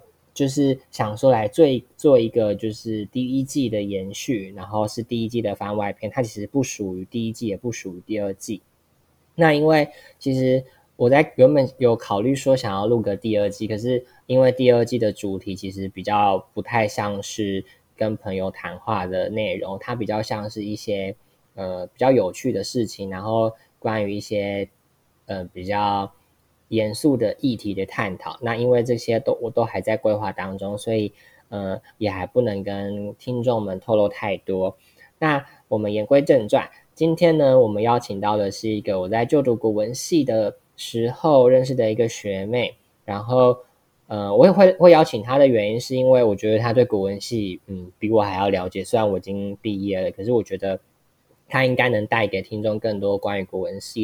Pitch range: 100-125 Hz